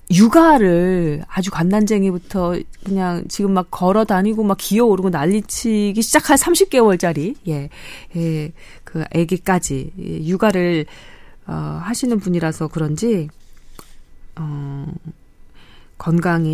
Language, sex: Korean, female